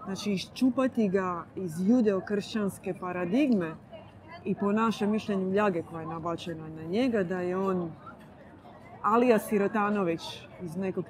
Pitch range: 180-215 Hz